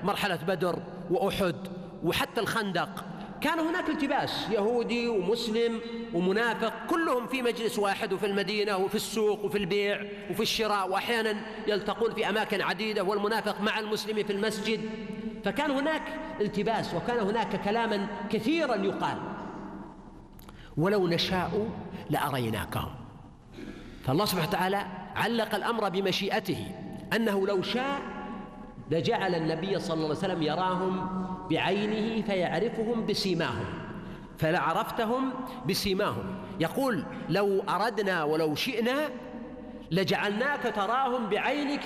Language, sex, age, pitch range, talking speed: Arabic, male, 50-69, 190-235 Hz, 105 wpm